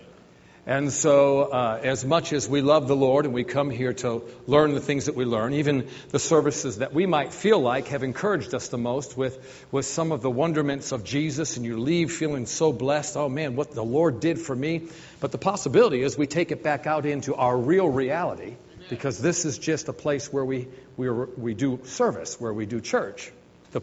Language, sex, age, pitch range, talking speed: English, male, 50-69, 125-165 Hz, 215 wpm